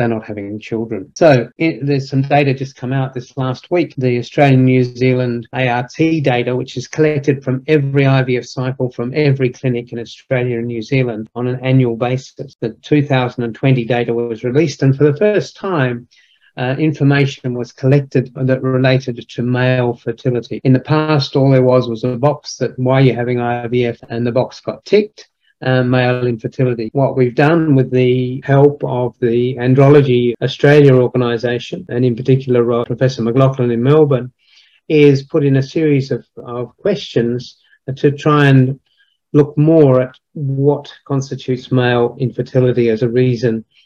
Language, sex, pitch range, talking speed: English, male, 120-140 Hz, 165 wpm